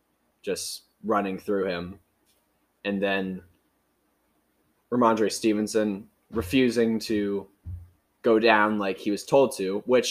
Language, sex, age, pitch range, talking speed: English, male, 20-39, 90-115 Hz, 105 wpm